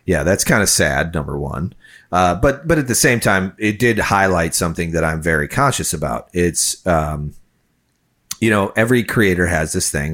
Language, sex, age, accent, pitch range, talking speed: English, male, 30-49, American, 75-100 Hz, 190 wpm